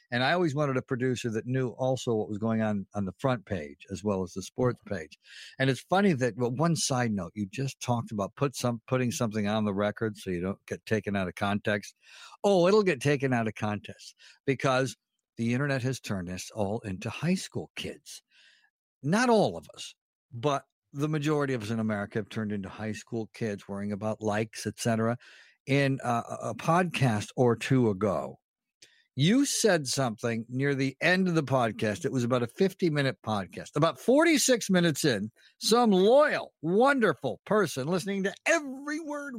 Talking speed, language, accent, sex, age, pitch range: 190 wpm, English, American, male, 60-79, 110-170 Hz